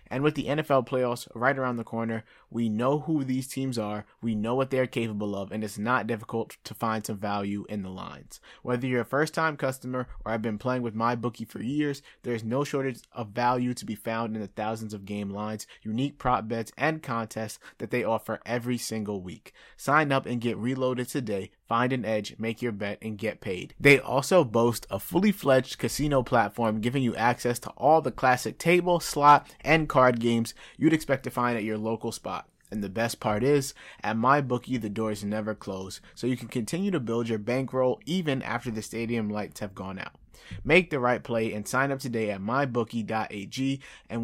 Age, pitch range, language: 20-39, 110-135 Hz, English